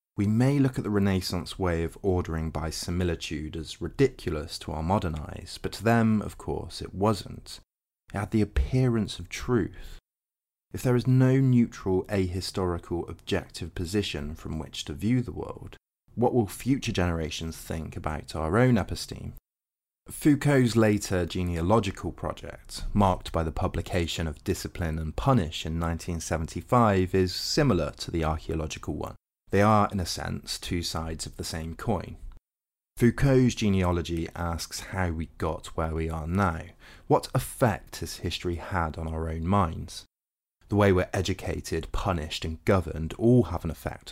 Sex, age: male, 30-49